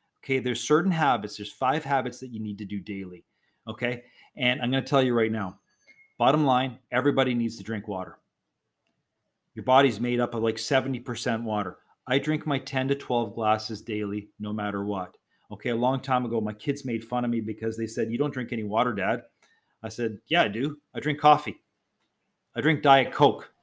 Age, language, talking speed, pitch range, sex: 40-59, English, 205 wpm, 110-135 Hz, male